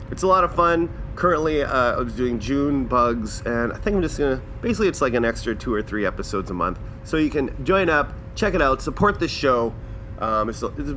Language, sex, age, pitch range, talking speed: English, male, 30-49, 105-150 Hz, 240 wpm